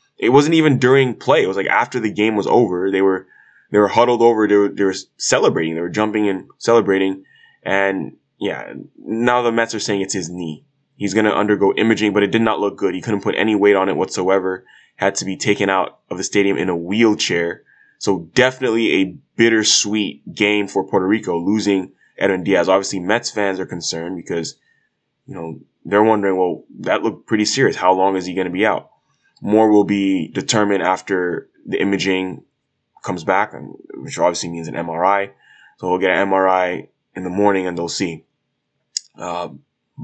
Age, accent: 20-39, American